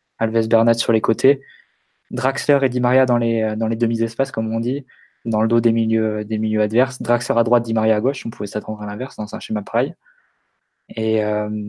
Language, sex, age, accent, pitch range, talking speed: French, male, 20-39, French, 110-125 Hz, 220 wpm